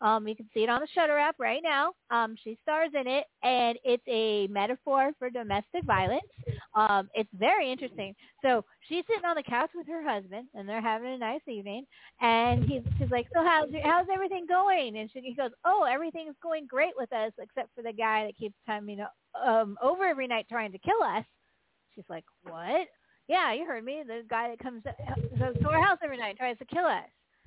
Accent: American